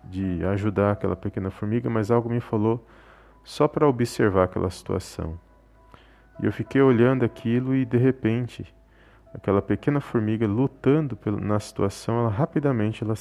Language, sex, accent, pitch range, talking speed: Portuguese, male, Brazilian, 95-120 Hz, 145 wpm